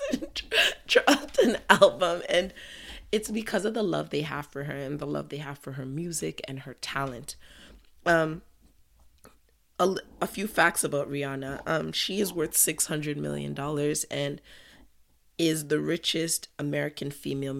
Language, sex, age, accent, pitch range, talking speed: English, female, 20-39, American, 140-170 Hz, 150 wpm